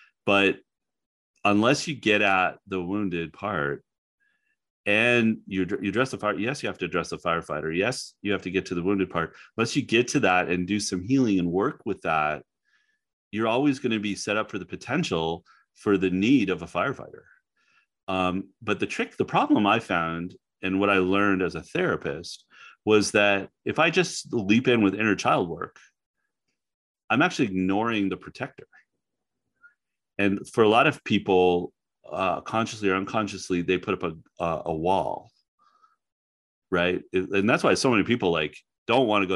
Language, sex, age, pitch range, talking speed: English, male, 30-49, 90-120 Hz, 180 wpm